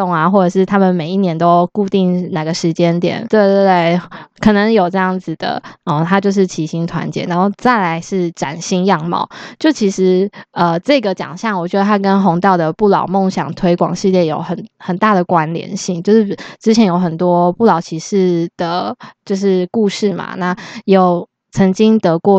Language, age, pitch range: Chinese, 20-39, 175-200 Hz